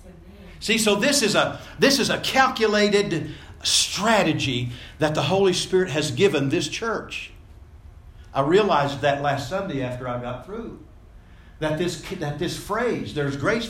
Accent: American